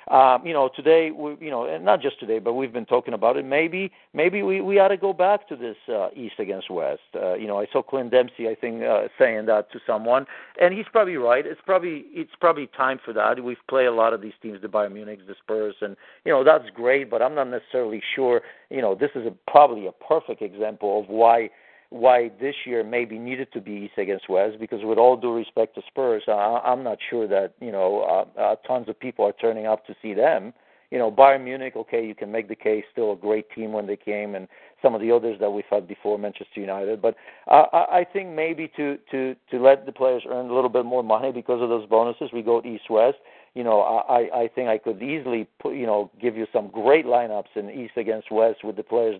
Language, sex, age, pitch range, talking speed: English, male, 50-69, 110-150 Hz, 240 wpm